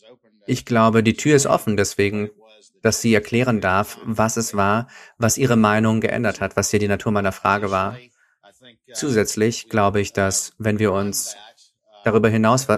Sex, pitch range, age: male, 105-125 Hz, 40-59